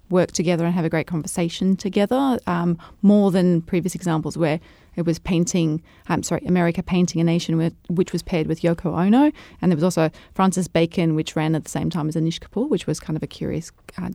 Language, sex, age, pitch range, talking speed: English, female, 30-49, 165-195 Hz, 220 wpm